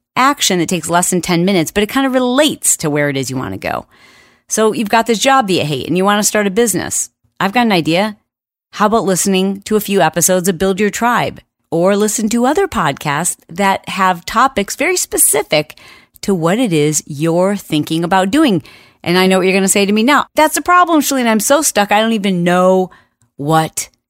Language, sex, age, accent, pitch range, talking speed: English, female, 40-59, American, 165-235 Hz, 225 wpm